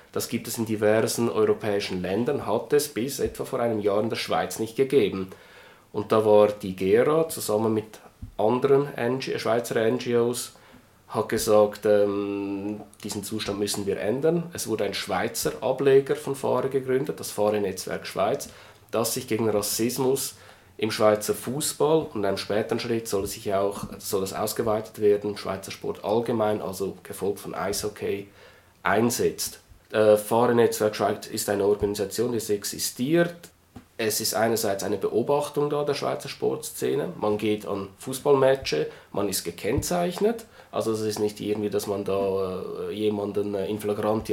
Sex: male